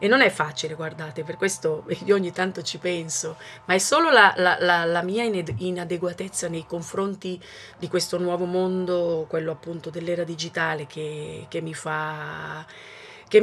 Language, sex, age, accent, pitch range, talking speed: Italian, female, 30-49, native, 160-190 Hz, 160 wpm